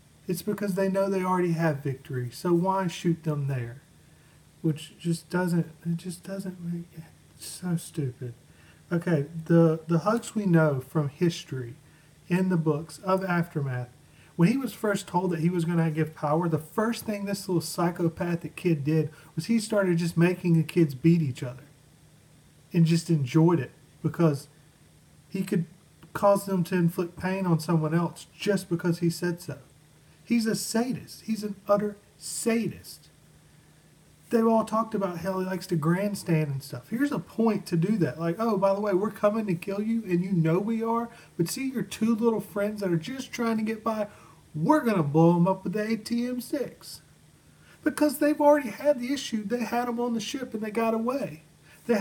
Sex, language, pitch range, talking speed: male, English, 160-220 Hz, 190 wpm